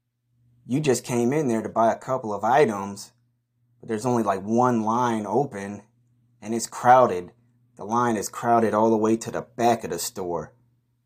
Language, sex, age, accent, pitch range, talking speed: English, male, 30-49, American, 110-120 Hz, 185 wpm